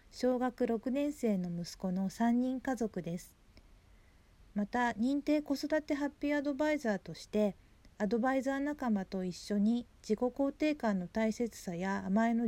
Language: Japanese